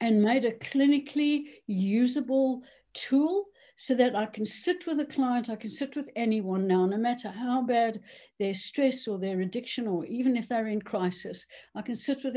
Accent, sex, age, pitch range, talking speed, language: British, female, 60-79, 210-270 Hz, 190 wpm, English